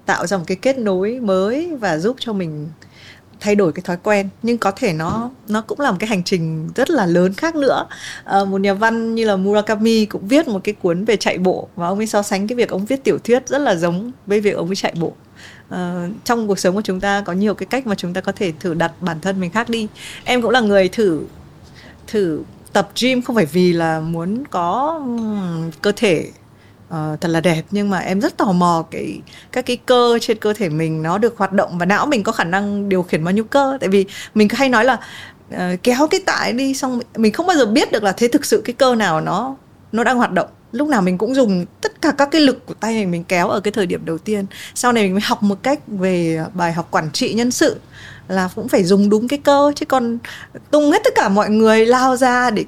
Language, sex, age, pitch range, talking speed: Vietnamese, female, 20-39, 180-240 Hz, 250 wpm